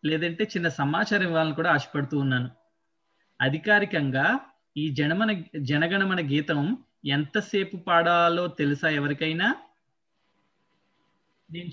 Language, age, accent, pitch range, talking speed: Telugu, 20-39, native, 140-170 Hz, 80 wpm